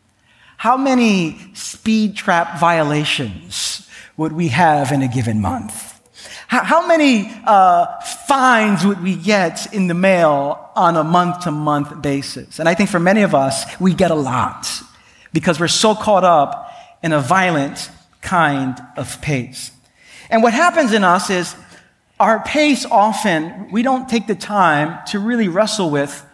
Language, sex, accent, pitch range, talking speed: English, male, American, 145-210 Hz, 150 wpm